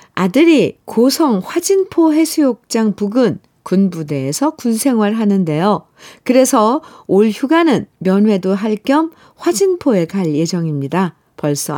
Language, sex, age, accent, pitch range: Korean, female, 50-69, native, 165-235 Hz